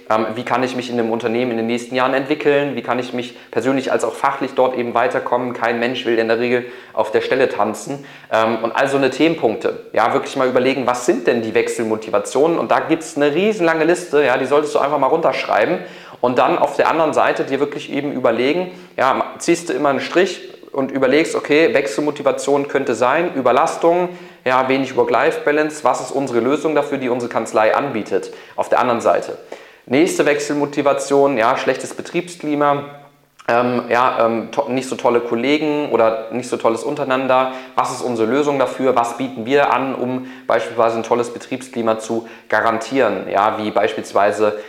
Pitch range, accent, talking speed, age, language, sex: 115-145 Hz, German, 185 wpm, 30-49, German, male